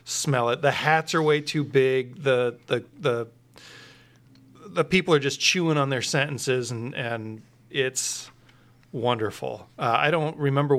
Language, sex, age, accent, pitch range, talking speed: English, male, 40-59, American, 125-165 Hz, 150 wpm